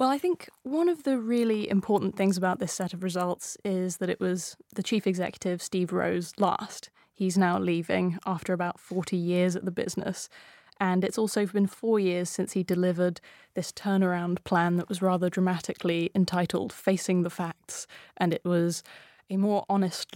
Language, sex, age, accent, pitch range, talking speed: English, female, 10-29, British, 175-195 Hz, 180 wpm